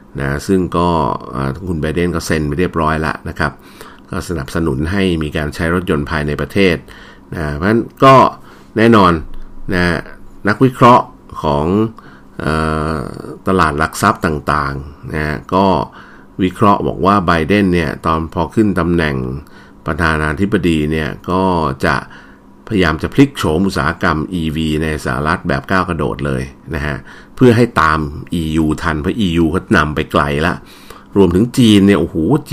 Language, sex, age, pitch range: Thai, male, 60-79, 75-95 Hz